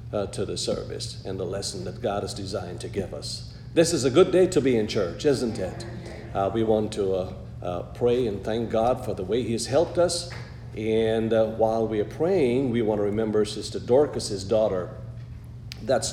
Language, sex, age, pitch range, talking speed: English, male, 50-69, 105-120 Hz, 210 wpm